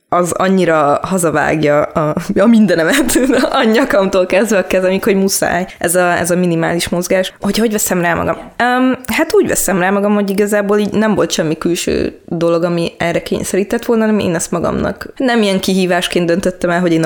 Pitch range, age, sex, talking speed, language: 165-205 Hz, 20-39, female, 185 wpm, Hungarian